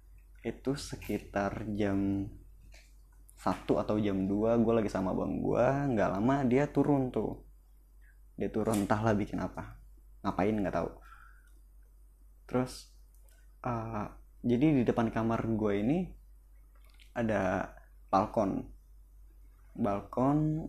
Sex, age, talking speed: male, 20-39, 105 wpm